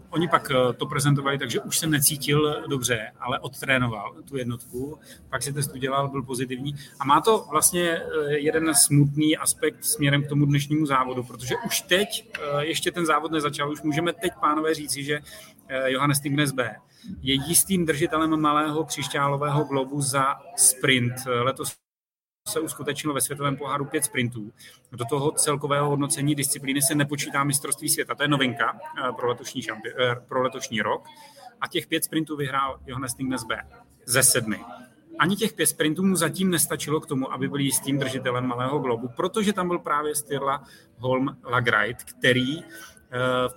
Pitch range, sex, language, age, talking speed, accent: 130-155 Hz, male, Czech, 30-49, 160 wpm, native